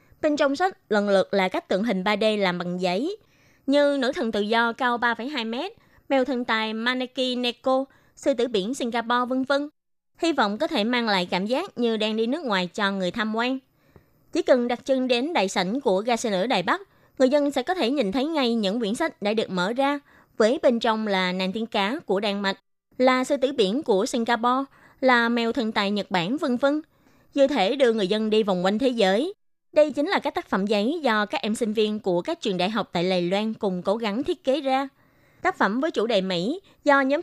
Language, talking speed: Vietnamese, 235 wpm